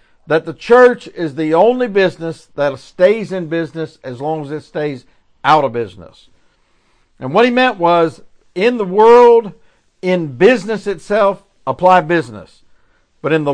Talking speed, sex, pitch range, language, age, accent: 155 wpm, male, 140-200 Hz, English, 60-79, American